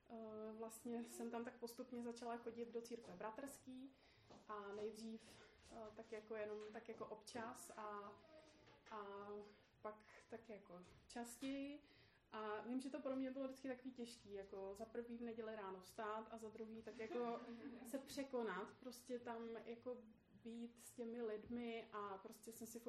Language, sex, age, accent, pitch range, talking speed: Czech, female, 20-39, native, 220-240 Hz, 160 wpm